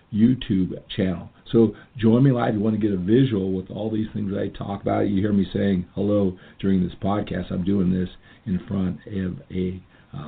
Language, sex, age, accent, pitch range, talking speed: English, male, 50-69, American, 95-115 Hz, 215 wpm